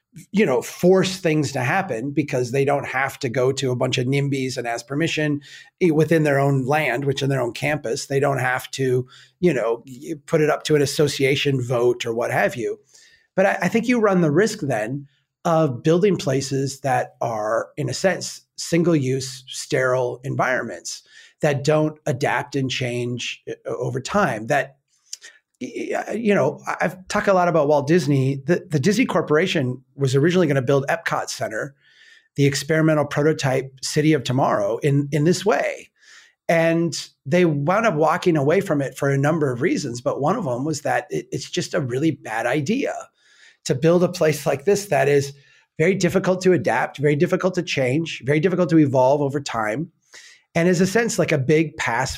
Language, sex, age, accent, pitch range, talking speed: English, male, 30-49, American, 135-175 Hz, 185 wpm